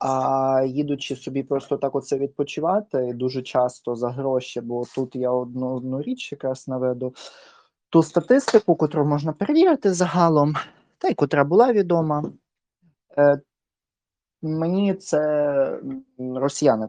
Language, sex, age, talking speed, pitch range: Ukrainian, male, 20-39, 120 wpm, 130-165 Hz